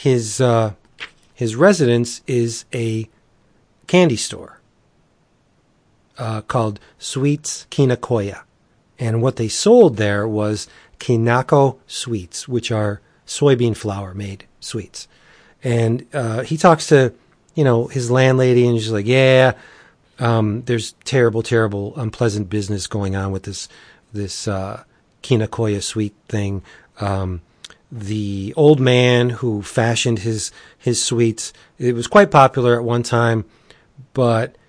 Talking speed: 125 wpm